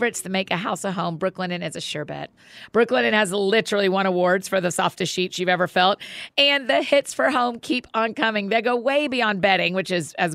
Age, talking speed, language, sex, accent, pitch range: 40-59, 225 wpm, English, female, American, 180-230 Hz